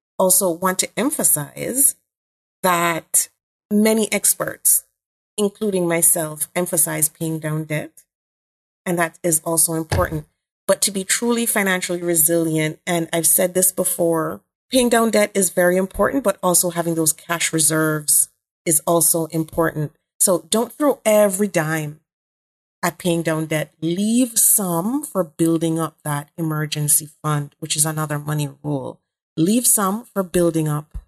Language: English